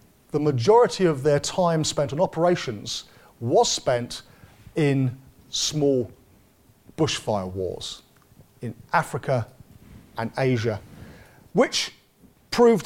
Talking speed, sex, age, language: 95 wpm, male, 40-59, English